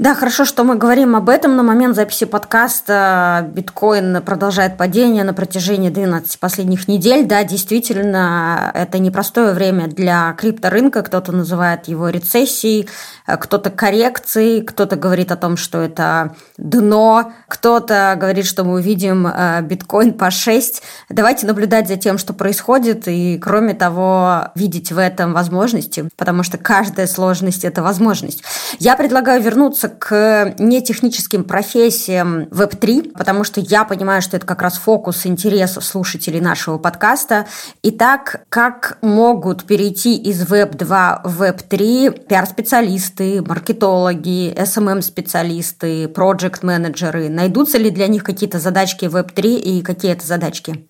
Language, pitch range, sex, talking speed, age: Russian, 180-220 Hz, female, 130 wpm, 20-39